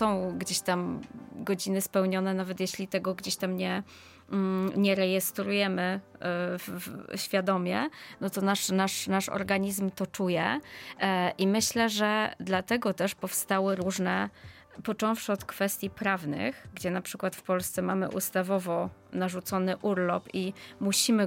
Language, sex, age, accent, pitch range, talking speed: Polish, female, 20-39, native, 185-205 Hz, 125 wpm